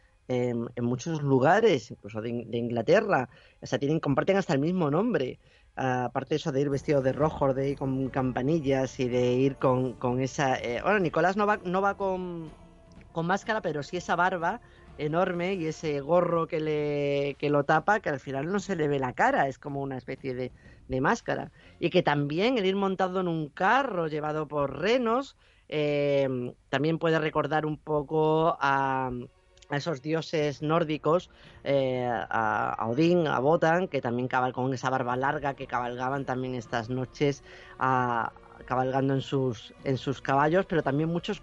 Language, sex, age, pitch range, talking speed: Spanish, female, 30-49, 130-165 Hz, 180 wpm